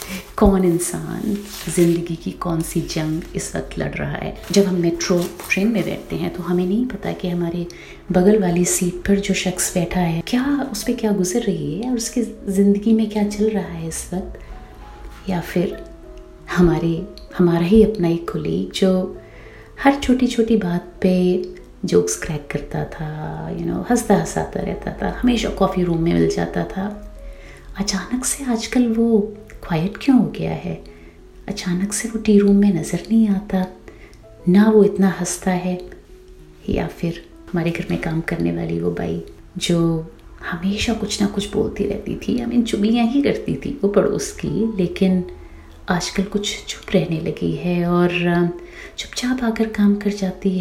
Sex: female